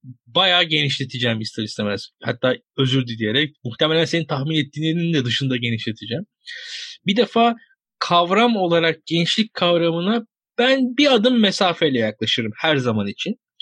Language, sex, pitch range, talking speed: Turkish, male, 140-220 Hz, 125 wpm